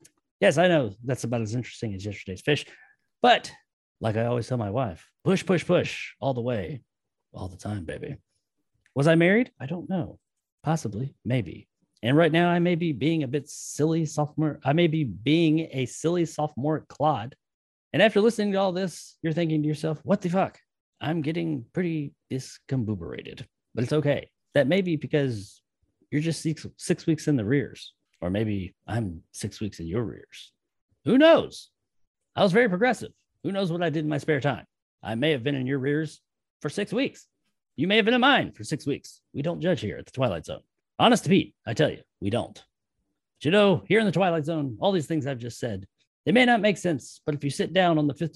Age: 30-49